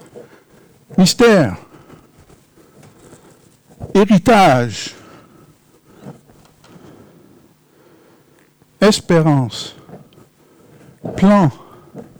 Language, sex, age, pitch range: French, male, 60-79, 145-205 Hz